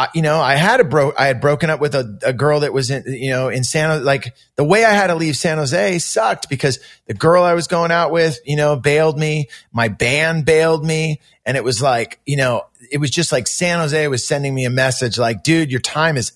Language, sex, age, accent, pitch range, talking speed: English, male, 30-49, American, 130-165 Hz, 255 wpm